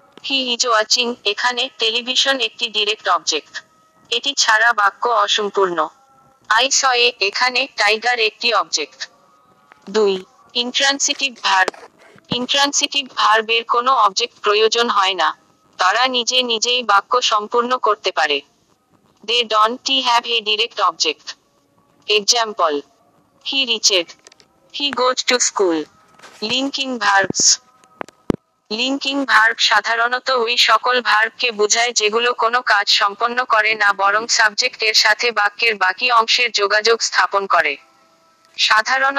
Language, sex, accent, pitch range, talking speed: Bengali, female, native, 215-250 Hz, 60 wpm